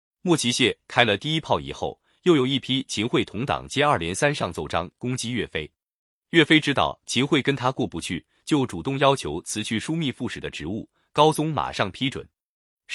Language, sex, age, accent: Chinese, male, 30-49, native